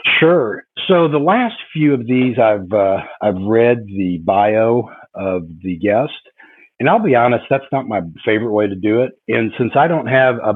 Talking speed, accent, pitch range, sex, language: 195 wpm, American, 95-120 Hz, male, English